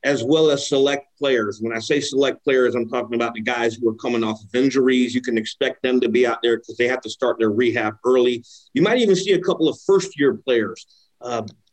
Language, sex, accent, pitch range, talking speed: English, male, American, 130-175 Hz, 240 wpm